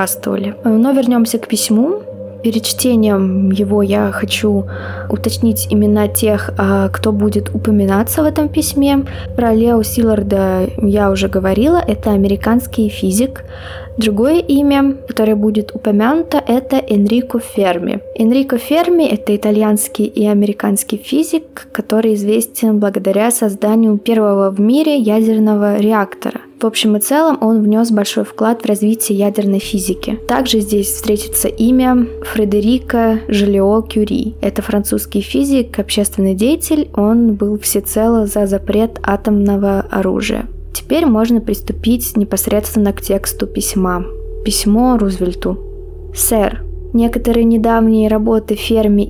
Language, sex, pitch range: Russian, female, 200-235 Hz